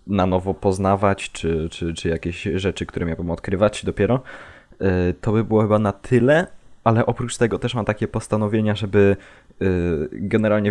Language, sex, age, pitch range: Polish, male, 20-39, 90-105 Hz